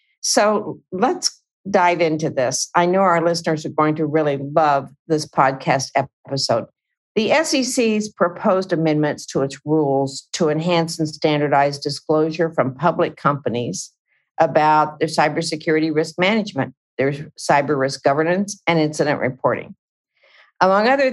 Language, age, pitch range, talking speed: English, 50-69, 140-175 Hz, 130 wpm